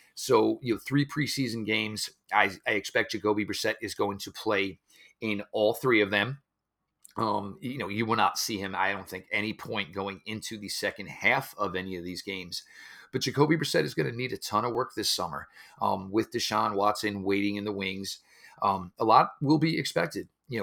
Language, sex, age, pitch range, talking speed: English, male, 40-59, 100-110 Hz, 205 wpm